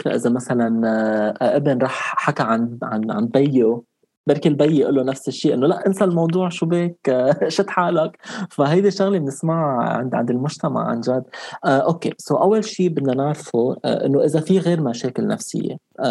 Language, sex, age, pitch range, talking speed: Arabic, male, 20-39, 125-165 Hz, 170 wpm